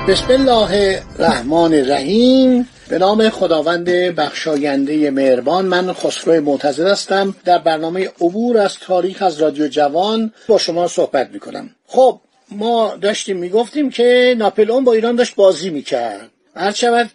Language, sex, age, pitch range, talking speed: Persian, male, 50-69, 175-230 Hz, 135 wpm